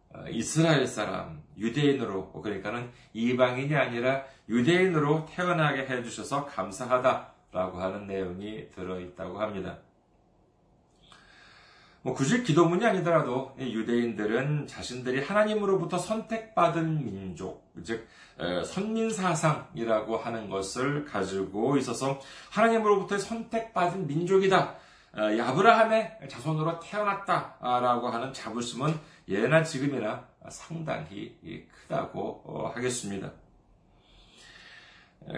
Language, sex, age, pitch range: Korean, male, 40-59, 105-155 Hz